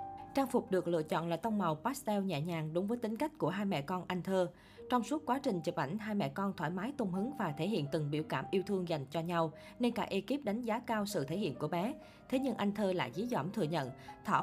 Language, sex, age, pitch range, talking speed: Vietnamese, female, 20-39, 170-235 Hz, 275 wpm